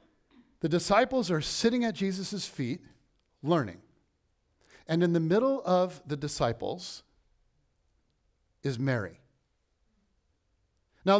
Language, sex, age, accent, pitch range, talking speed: English, male, 50-69, American, 150-220 Hz, 95 wpm